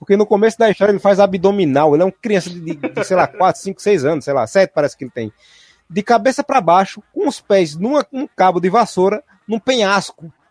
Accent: Brazilian